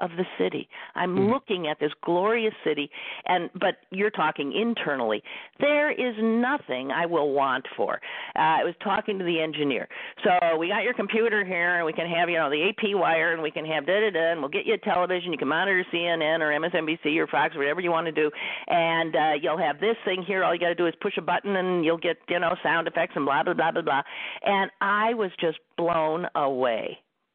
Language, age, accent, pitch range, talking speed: English, 50-69, American, 160-205 Hz, 215 wpm